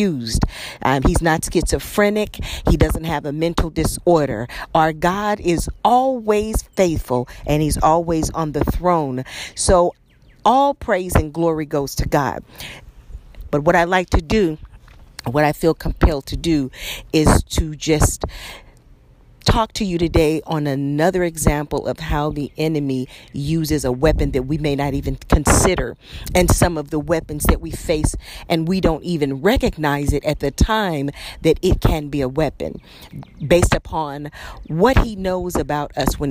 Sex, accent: female, American